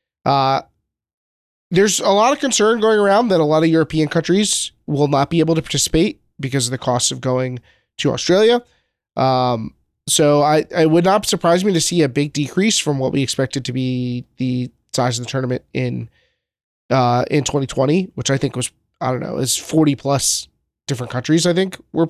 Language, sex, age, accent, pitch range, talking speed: English, male, 30-49, American, 130-170 Hz, 195 wpm